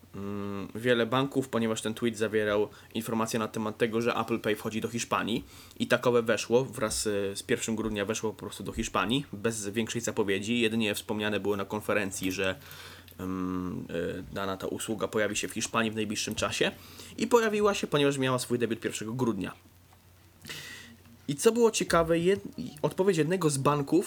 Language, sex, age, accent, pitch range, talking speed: Polish, male, 20-39, native, 105-140 Hz, 165 wpm